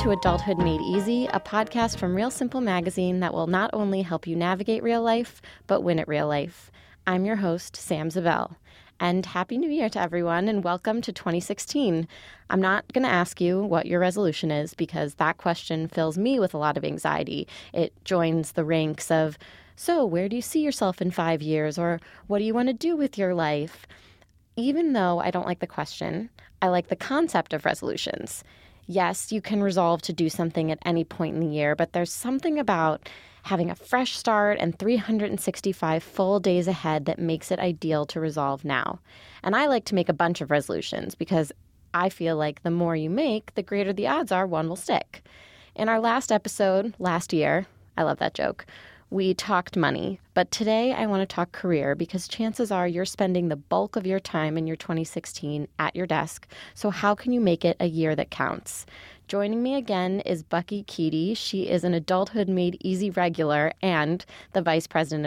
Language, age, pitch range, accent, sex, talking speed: English, 20-39, 165-205 Hz, American, female, 200 wpm